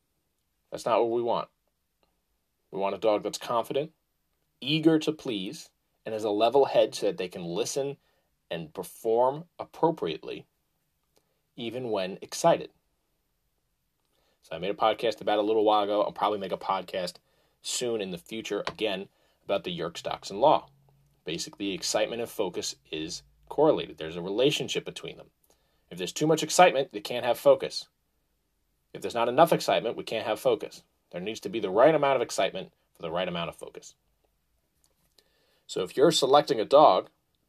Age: 30-49